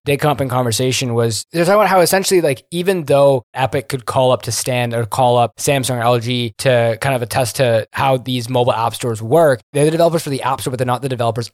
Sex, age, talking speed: male, 20-39, 255 wpm